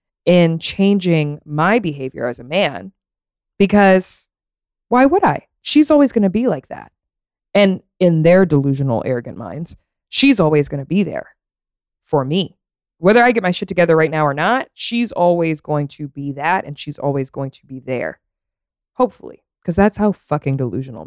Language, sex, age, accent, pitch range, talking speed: English, female, 20-39, American, 140-200 Hz, 175 wpm